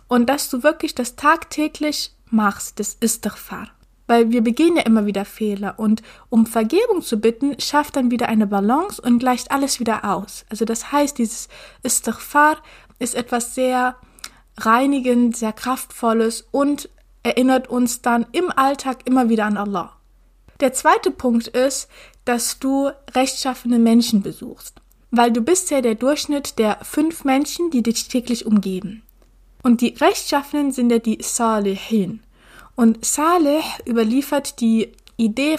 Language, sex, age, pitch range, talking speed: German, female, 20-39, 220-275 Hz, 145 wpm